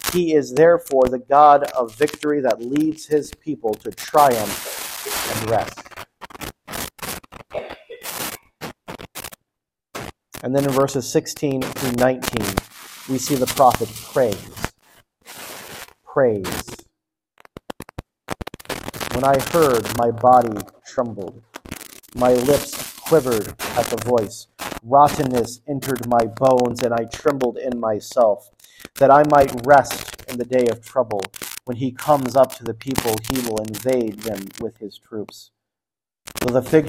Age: 40-59